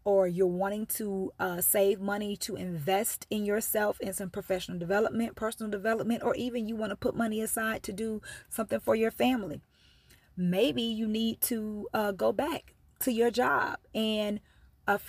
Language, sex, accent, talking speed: English, female, American, 170 wpm